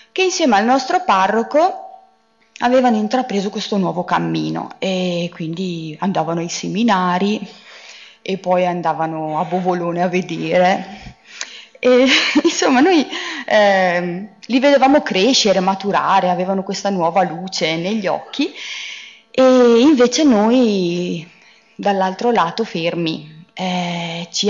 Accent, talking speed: native, 105 wpm